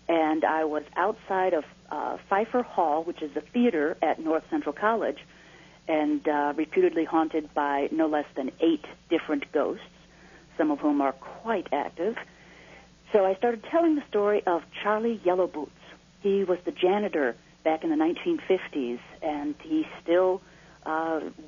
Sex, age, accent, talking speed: female, 50-69, American, 155 wpm